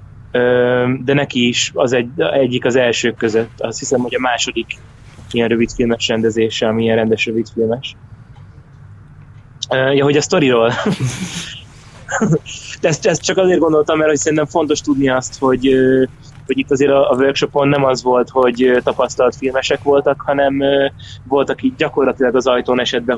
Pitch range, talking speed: 120-140 Hz, 150 wpm